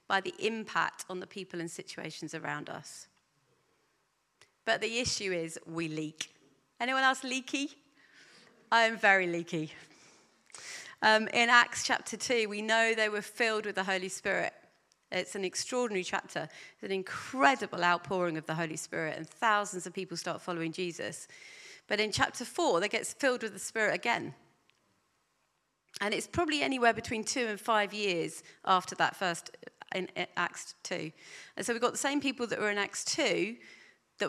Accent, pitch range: British, 175-225 Hz